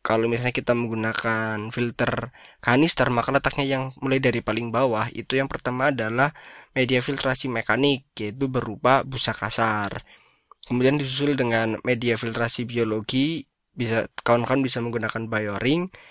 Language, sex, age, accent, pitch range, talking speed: Indonesian, male, 20-39, native, 115-135 Hz, 135 wpm